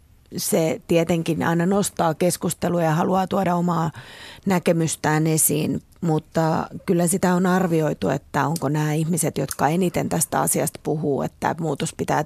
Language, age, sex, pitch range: Finnish, 30-49, female, 155-180 Hz